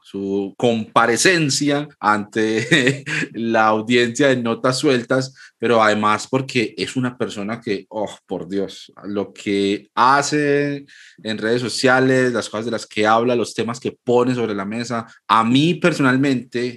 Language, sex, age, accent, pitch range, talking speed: Spanish, male, 30-49, Colombian, 115-145 Hz, 145 wpm